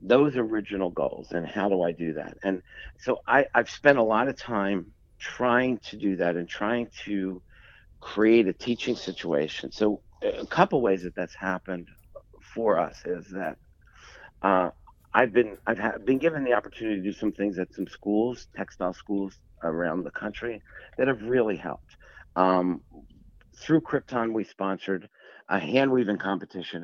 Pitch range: 85-110 Hz